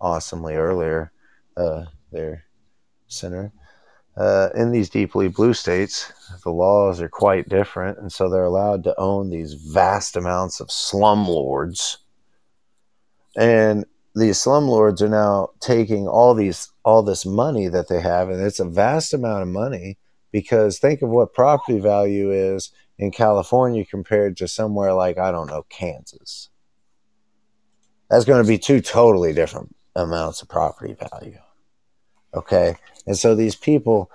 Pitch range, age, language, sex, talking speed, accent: 90-110 Hz, 30-49, English, male, 145 wpm, American